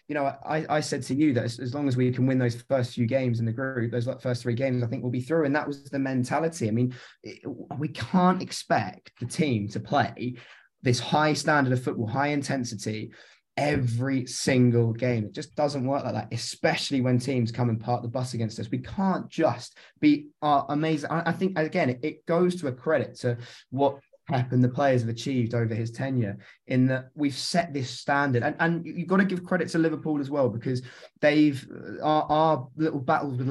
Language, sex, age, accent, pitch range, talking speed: English, male, 20-39, British, 125-155 Hz, 215 wpm